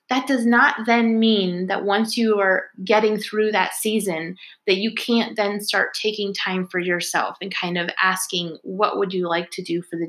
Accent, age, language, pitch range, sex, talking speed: American, 20-39, English, 185-220 Hz, female, 200 wpm